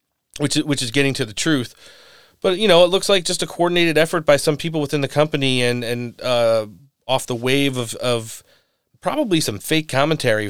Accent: American